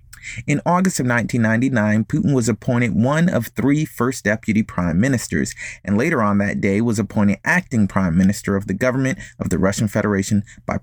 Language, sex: English, male